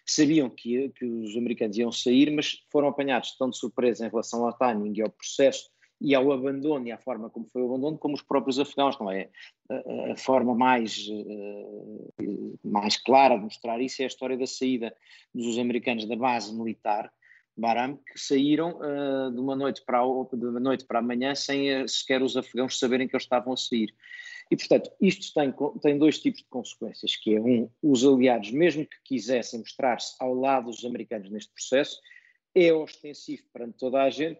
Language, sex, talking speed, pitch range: Portuguese, male, 195 wpm, 120-150 Hz